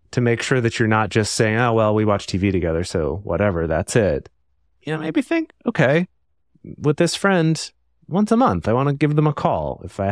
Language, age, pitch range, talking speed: English, 30-49, 100-145 Hz, 225 wpm